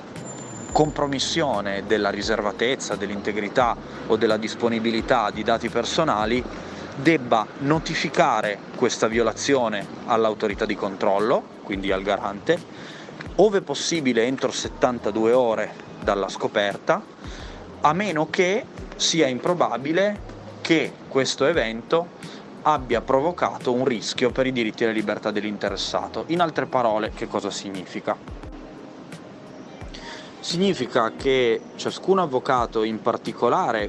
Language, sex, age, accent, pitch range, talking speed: Italian, male, 30-49, native, 105-145 Hz, 105 wpm